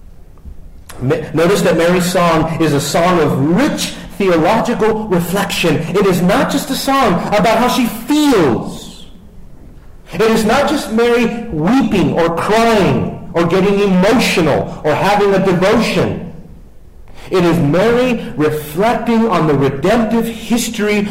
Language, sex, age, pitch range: English, male, 50-69, 165-230 Hz